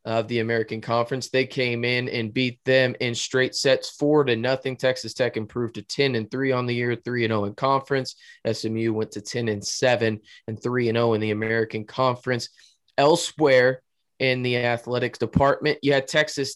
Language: English